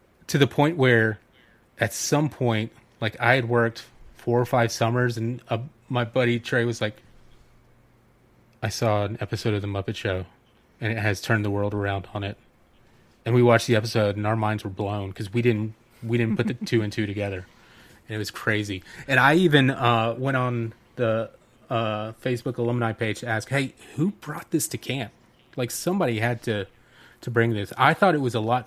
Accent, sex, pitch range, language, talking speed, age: American, male, 110-125 Hz, English, 200 wpm, 30-49